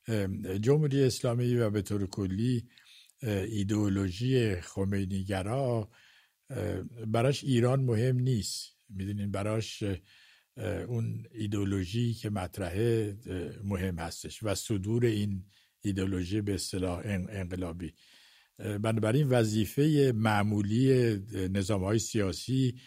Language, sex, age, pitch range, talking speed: English, male, 60-79, 95-115 Hz, 85 wpm